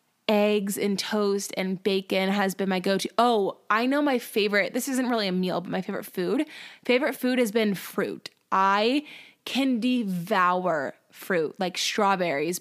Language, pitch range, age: English, 195-240 Hz, 10-29